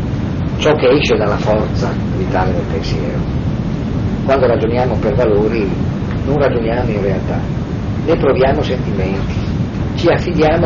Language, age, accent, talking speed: Italian, 40-59, native, 120 wpm